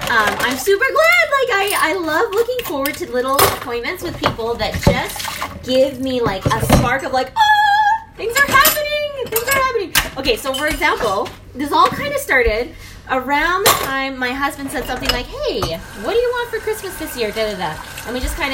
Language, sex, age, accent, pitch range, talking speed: English, female, 20-39, American, 225-320 Hz, 205 wpm